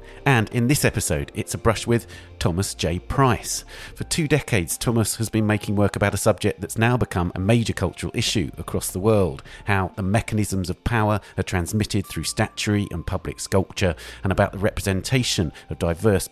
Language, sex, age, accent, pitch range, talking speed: English, male, 50-69, British, 90-115 Hz, 185 wpm